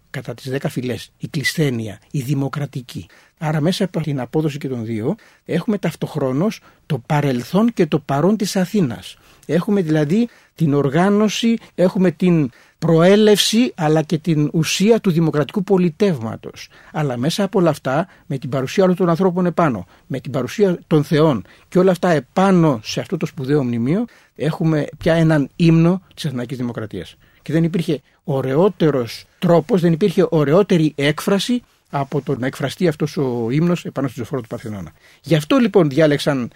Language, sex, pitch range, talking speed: Greek, male, 135-175 Hz, 160 wpm